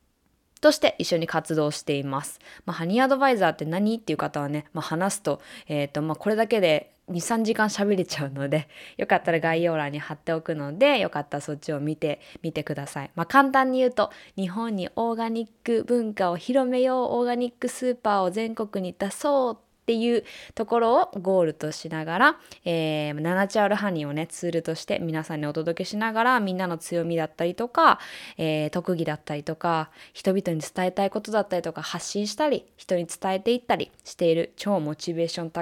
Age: 20-39